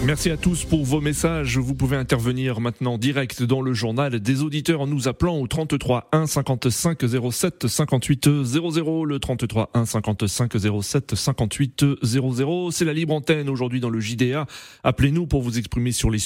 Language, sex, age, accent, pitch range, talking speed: French, male, 30-49, French, 115-150 Hz, 175 wpm